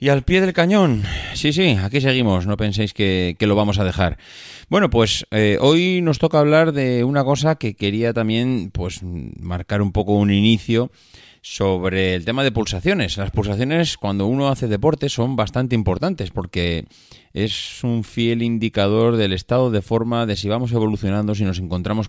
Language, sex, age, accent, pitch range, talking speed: Spanish, male, 30-49, Spanish, 100-120 Hz, 175 wpm